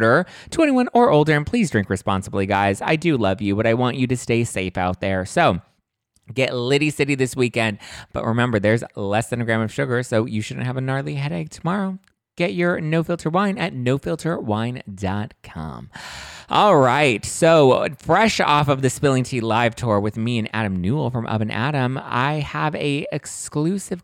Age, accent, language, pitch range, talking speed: 30-49, American, English, 115-165 Hz, 185 wpm